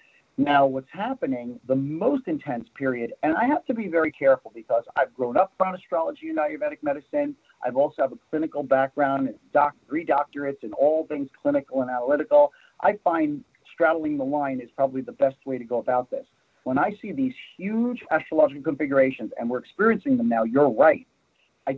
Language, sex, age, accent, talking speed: English, male, 40-59, American, 185 wpm